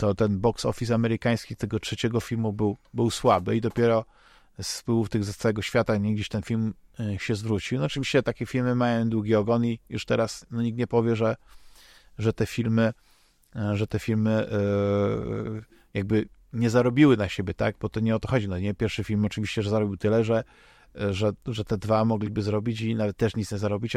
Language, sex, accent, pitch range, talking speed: Polish, male, native, 105-125 Hz, 200 wpm